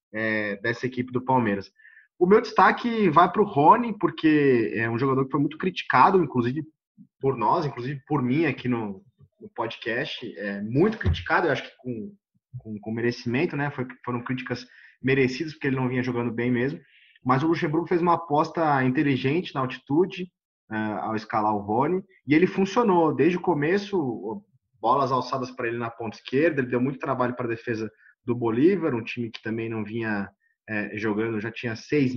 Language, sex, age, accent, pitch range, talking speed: Portuguese, male, 20-39, Brazilian, 120-165 Hz, 185 wpm